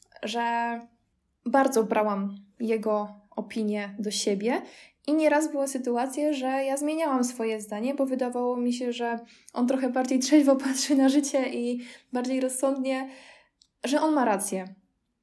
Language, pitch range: Polish, 215-260 Hz